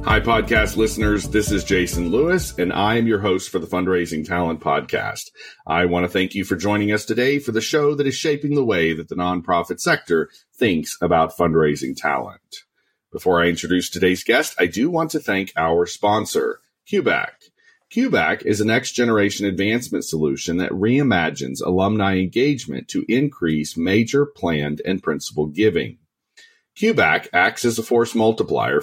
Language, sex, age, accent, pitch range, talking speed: English, male, 40-59, American, 90-130 Hz, 160 wpm